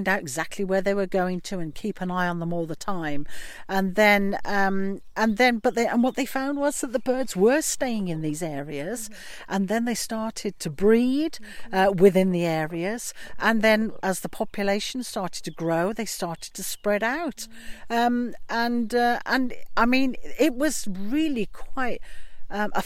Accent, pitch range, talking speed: British, 180-235 Hz, 185 wpm